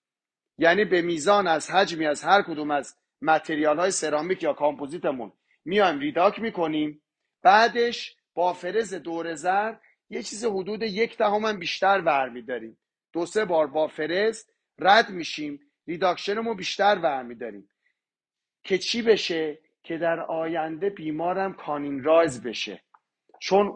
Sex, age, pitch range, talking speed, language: male, 40-59, 140-190 Hz, 125 wpm, Persian